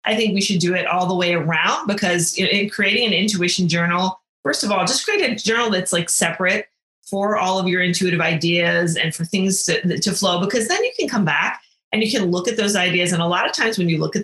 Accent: American